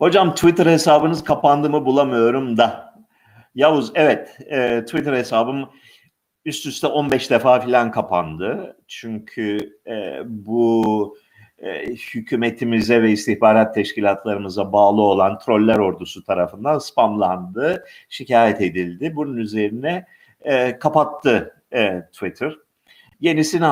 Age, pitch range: 50-69, 115-165 Hz